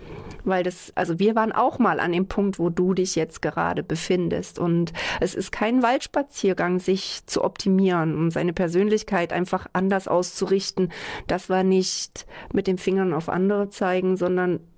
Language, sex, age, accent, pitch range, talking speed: German, female, 40-59, German, 175-205 Hz, 160 wpm